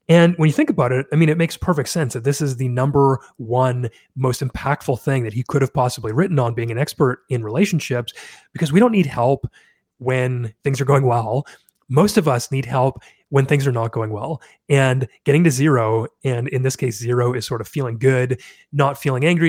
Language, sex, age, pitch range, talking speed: English, male, 30-49, 125-150 Hz, 220 wpm